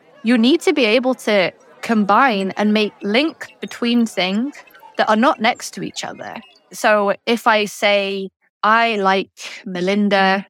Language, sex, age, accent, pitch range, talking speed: English, female, 20-39, British, 195-245 Hz, 150 wpm